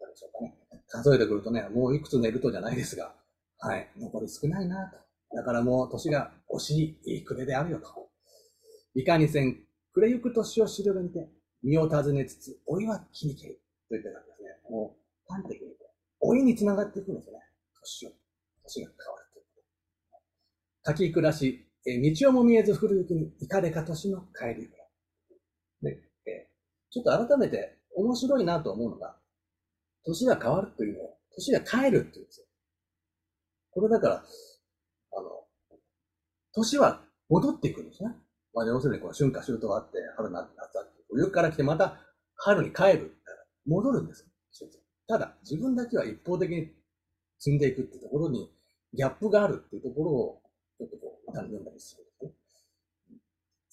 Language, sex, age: Japanese, male, 40-59